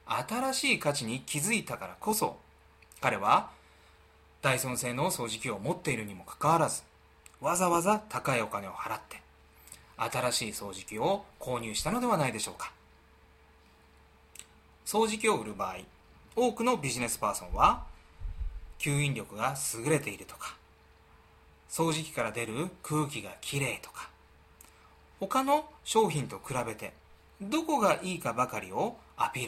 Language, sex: Japanese, male